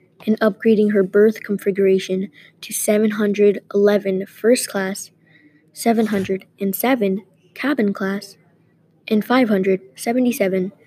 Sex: female